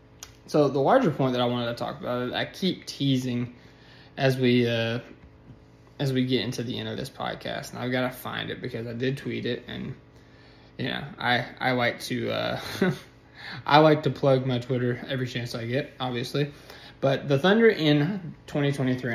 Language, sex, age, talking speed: English, male, 20-39, 195 wpm